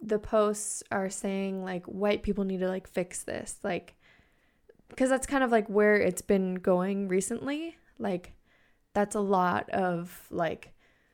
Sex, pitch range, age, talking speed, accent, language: female, 185-215 Hz, 20-39, 155 wpm, American, English